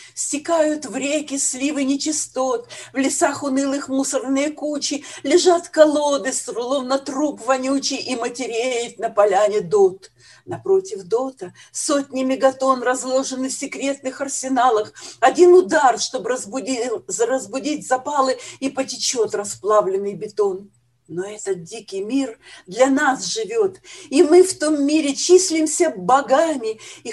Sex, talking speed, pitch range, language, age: female, 120 wpm, 225-330 Hz, Russian, 50-69